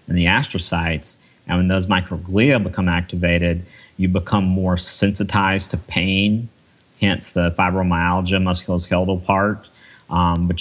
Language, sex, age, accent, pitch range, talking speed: English, male, 40-59, American, 85-95 Hz, 125 wpm